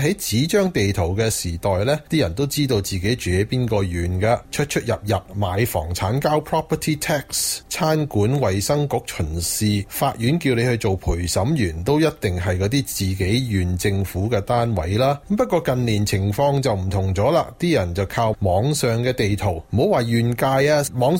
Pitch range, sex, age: 100-145 Hz, male, 30-49